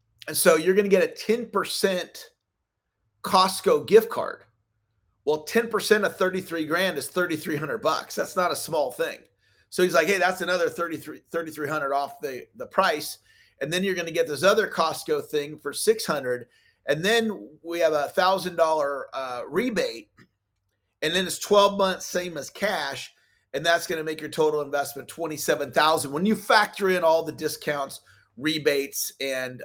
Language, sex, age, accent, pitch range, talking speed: English, male, 40-59, American, 130-205 Hz, 155 wpm